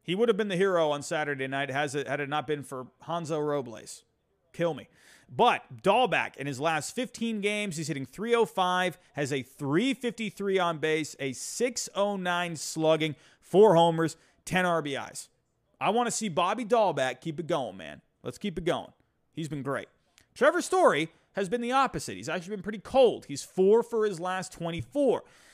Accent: American